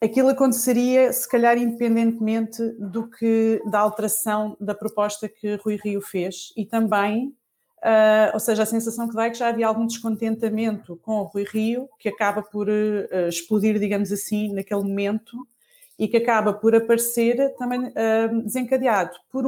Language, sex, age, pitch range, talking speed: Portuguese, female, 30-49, 205-245 Hz, 160 wpm